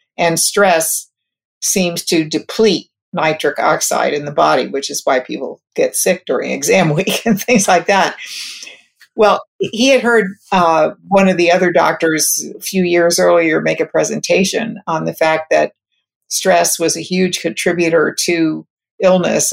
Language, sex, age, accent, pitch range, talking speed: English, female, 50-69, American, 160-195 Hz, 155 wpm